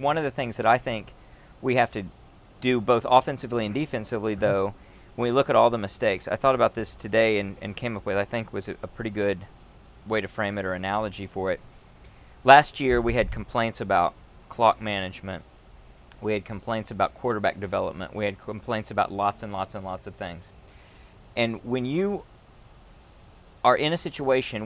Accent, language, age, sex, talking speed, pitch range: American, English, 40-59, male, 190 wpm, 100-125 Hz